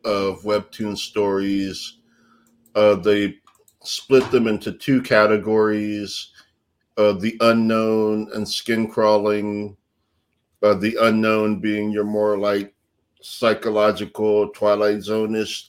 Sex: male